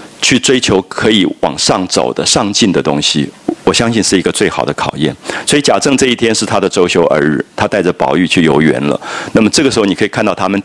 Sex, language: male, Japanese